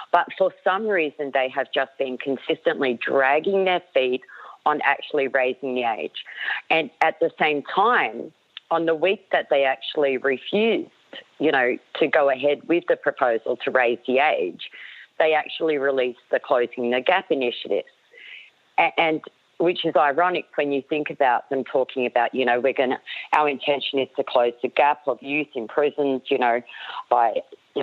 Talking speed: 175 wpm